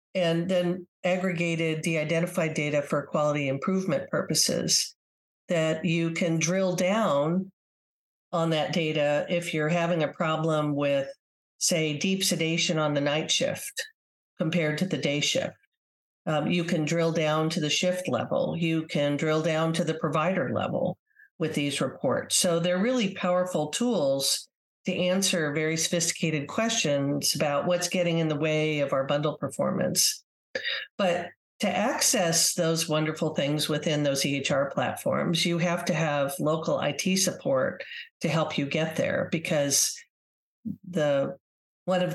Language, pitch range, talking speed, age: English, 155-180 Hz, 145 wpm, 50-69